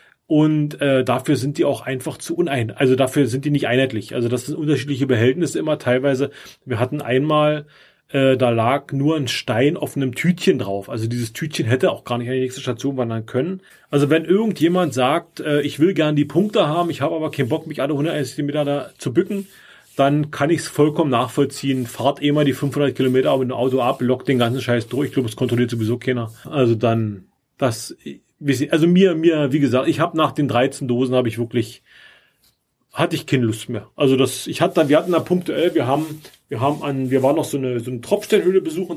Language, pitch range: German, 130-155 Hz